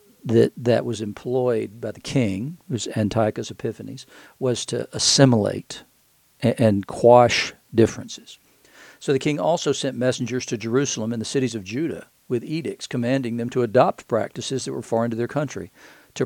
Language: English